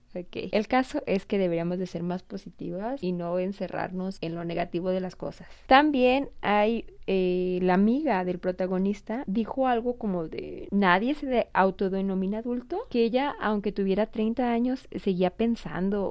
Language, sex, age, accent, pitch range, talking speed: Spanish, female, 30-49, Mexican, 180-230 Hz, 160 wpm